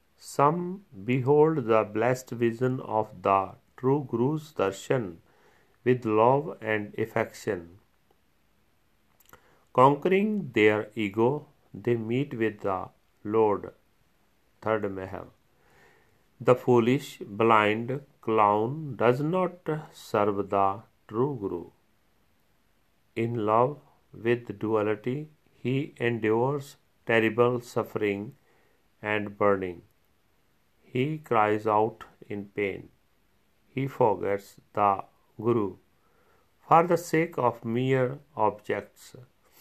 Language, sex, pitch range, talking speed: Punjabi, male, 105-135 Hz, 90 wpm